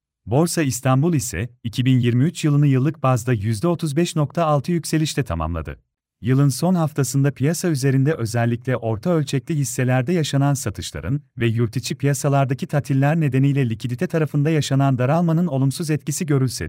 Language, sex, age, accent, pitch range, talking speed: Turkish, male, 40-59, native, 125-155 Hz, 120 wpm